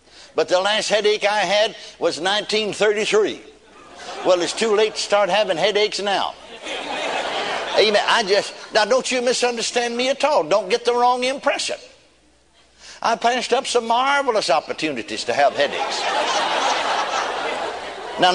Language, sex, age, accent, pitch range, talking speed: English, male, 60-79, American, 155-210 Hz, 135 wpm